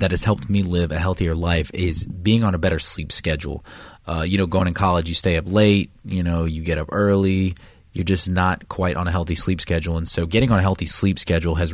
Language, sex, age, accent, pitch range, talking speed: English, male, 30-49, American, 85-105 Hz, 250 wpm